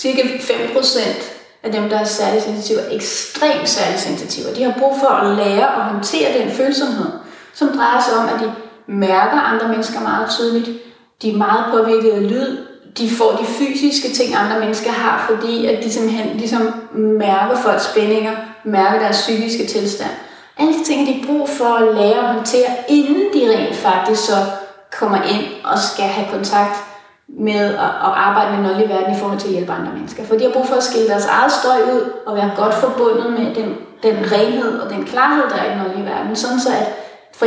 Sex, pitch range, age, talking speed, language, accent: female, 205-255 Hz, 30-49, 195 wpm, Danish, native